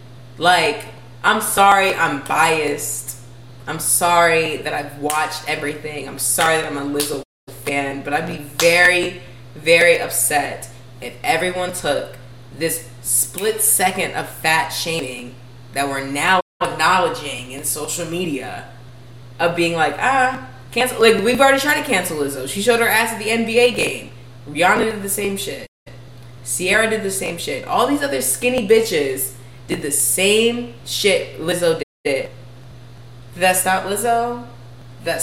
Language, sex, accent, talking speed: English, female, American, 145 wpm